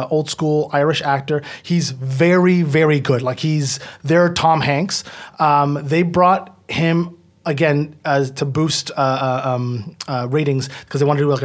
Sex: male